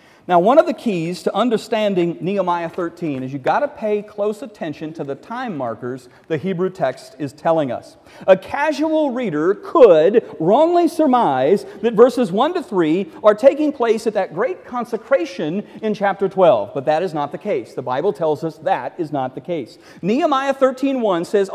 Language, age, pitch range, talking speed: English, 40-59, 155-230 Hz, 180 wpm